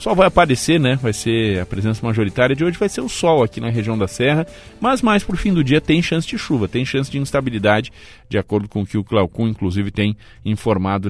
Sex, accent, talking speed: male, Brazilian, 240 wpm